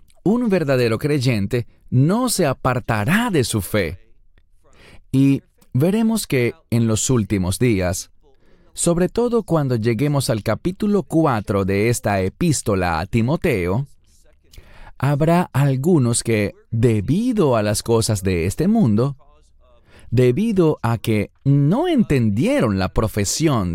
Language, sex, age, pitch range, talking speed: English, male, 30-49, 100-145 Hz, 115 wpm